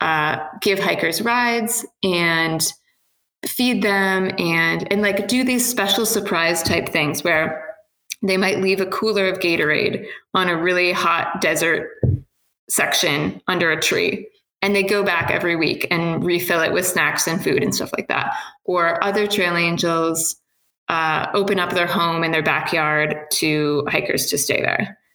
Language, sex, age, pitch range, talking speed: English, female, 20-39, 170-210 Hz, 160 wpm